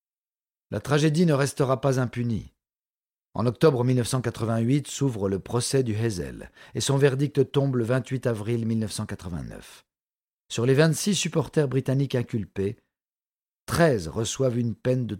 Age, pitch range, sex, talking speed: 50-69, 110-140 Hz, male, 130 wpm